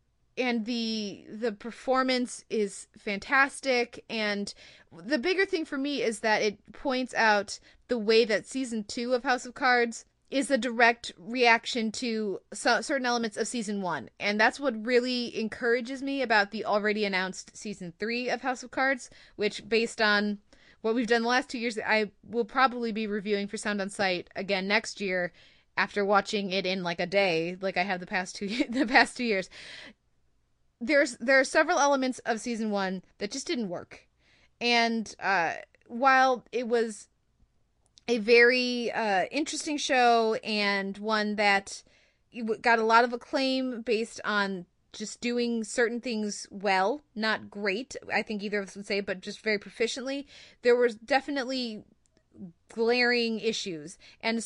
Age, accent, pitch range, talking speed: 20-39, American, 205-250 Hz, 160 wpm